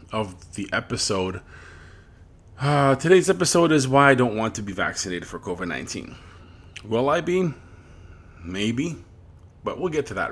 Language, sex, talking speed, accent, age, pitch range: English, male, 150 wpm, American, 30-49, 90-135 Hz